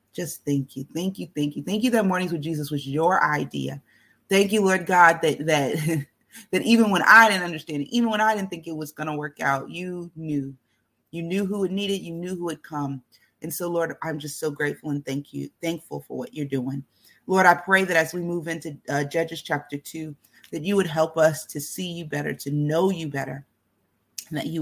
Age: 30-49